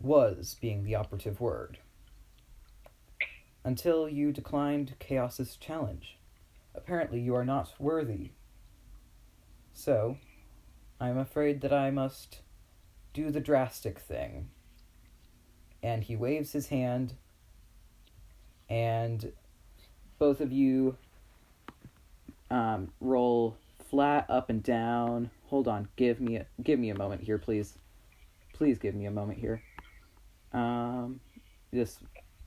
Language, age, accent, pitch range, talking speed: English, 30-49, American, 100-130 Hz, 110 wpm